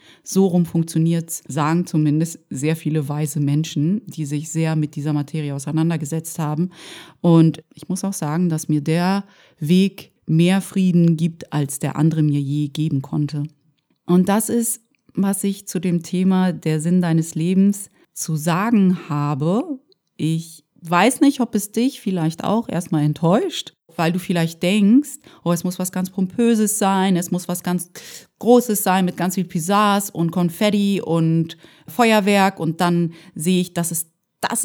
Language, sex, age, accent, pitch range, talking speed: German, female, 30-49, German, 165-205 Hz, 160 wpm